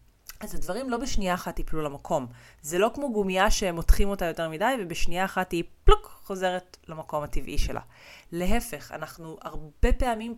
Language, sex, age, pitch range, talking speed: Hebrew, female, 30-49, 150-200 Hz, 155 wpm